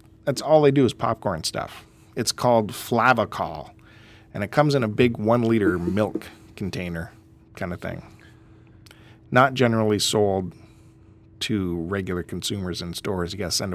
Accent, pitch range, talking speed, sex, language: American, 105-130 Hz, 150 wpm, male, English